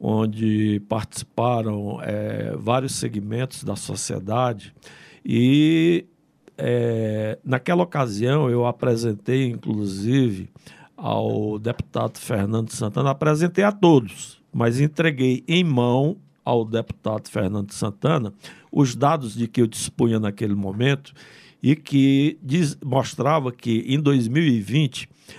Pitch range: 110-155 Hz